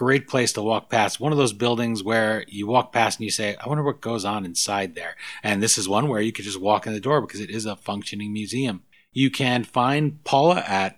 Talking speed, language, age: 250 wpm, English, 30-49